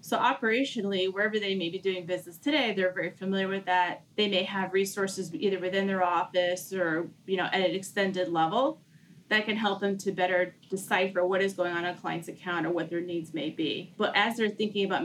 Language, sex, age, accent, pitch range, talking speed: English, female, 30-49, American, 180-210 Hz, 220 wpm